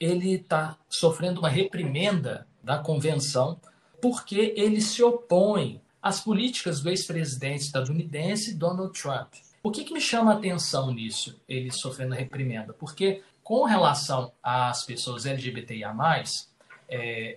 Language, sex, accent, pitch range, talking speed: Portuguese, male, Brazilian, 130-175 Hz, 135 wpm